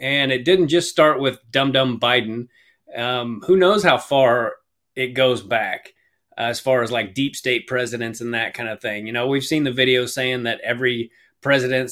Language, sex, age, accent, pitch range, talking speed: English, male, 30-49, American, 120-155 Hz, 195 wpm